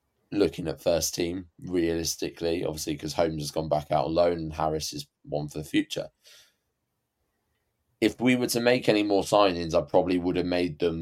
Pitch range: 80-110 Hz